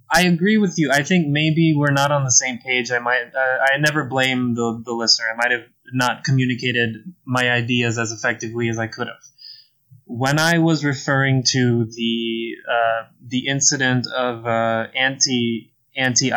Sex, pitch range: male, 120-140 Hz